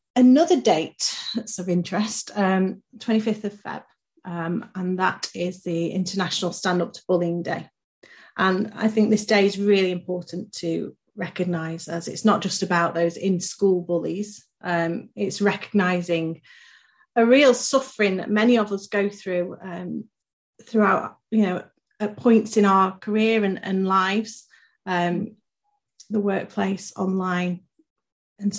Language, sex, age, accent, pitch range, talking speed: English, female, 30-49, British, 185-230 Hz, 145 wpm